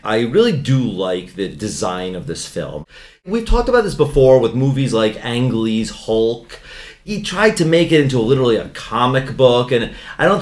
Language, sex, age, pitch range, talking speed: English, male, 40-59, 115-150 Hz, 190 wpm